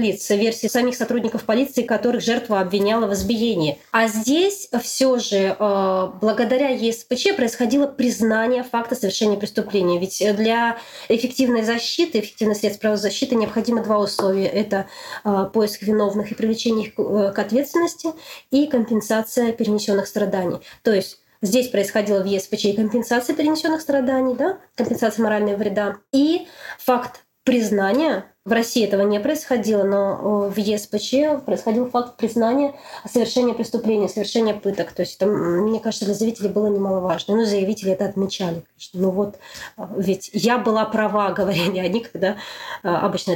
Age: 20-39